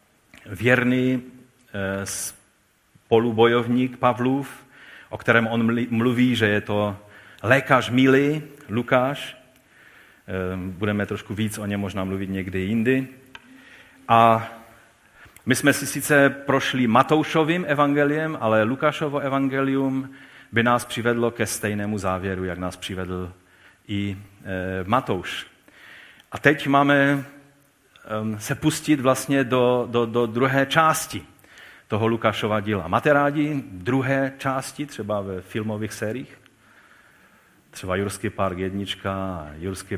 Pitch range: 100-130 Hz